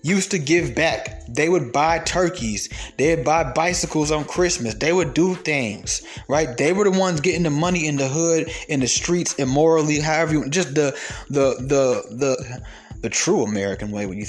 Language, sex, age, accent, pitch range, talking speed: English, male, 20-39, American, 155-220 Hz, 190 wpm